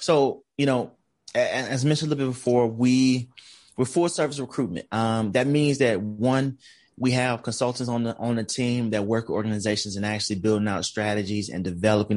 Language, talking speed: English, 185 wpm